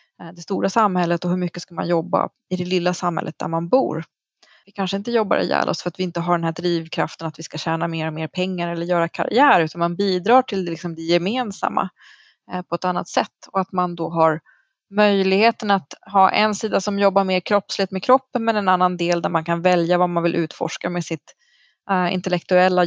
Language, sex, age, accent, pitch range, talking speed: Swedish, female, 20-39, native, 175-200 Hz, 220 wpm